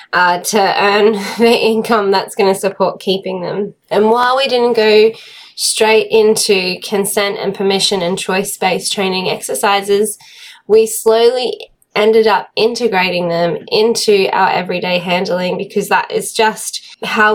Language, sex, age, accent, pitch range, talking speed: English, female, 20-39, Australian, 185-225 Hz, 135 wpm